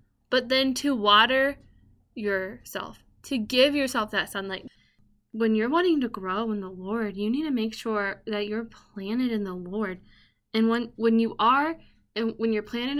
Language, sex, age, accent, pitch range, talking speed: English, female, 10-29, American, 205-250 Hz, 175 wpm